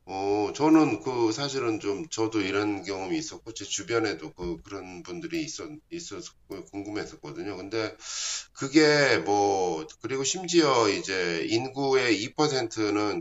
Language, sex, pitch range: Korean, male, 105-165 Hz